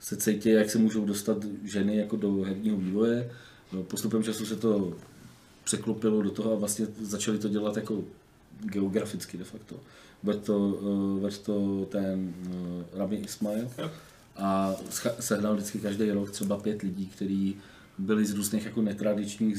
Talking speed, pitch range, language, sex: 155 wpm, 100-110 Hz, Czech, male